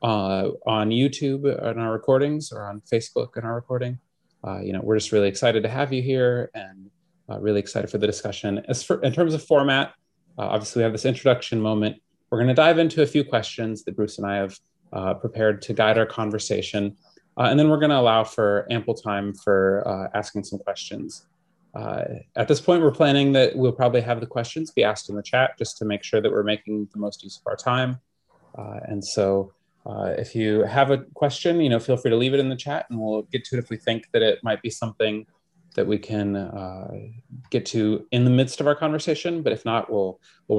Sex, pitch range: male, 105-130 Hz